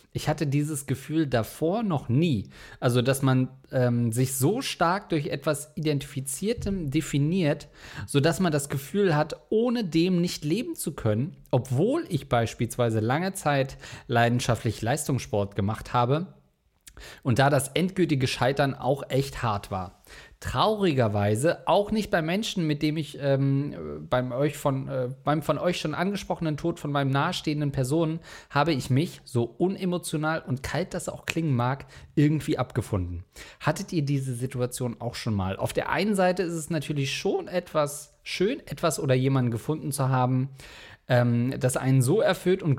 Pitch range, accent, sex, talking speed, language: 125-160 Hz, German, male, 155 wpm, German